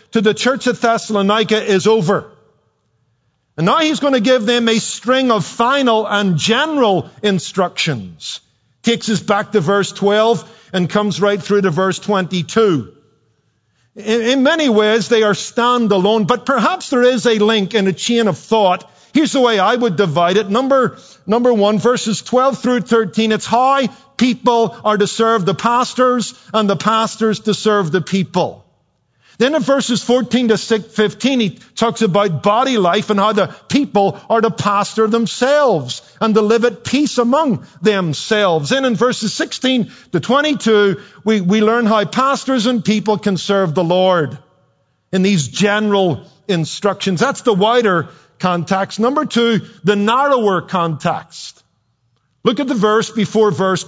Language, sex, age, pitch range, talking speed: English, male, 50-69, 185-235 Hz, 160 wpm